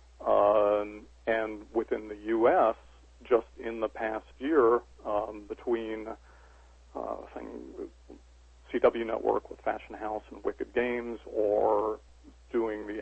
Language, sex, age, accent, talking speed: English, male, 50-69, American, 120 wpm